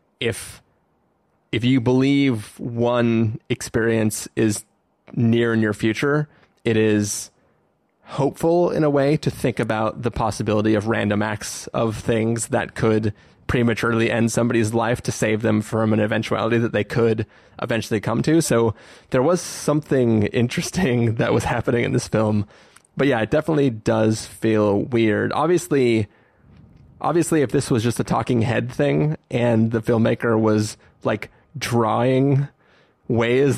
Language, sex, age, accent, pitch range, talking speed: English, male, 20-39, American, 110-135 Hz, 145 wpm